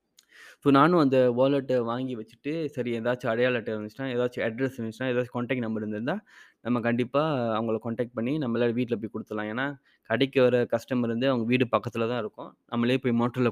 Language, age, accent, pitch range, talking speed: Tamil, 20-39, native, 115-135 Hz, 180 wpm